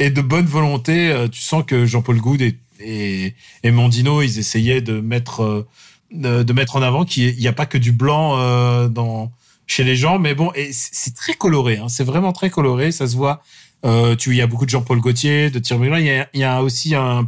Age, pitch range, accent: 30-49, 120-150 Hz, French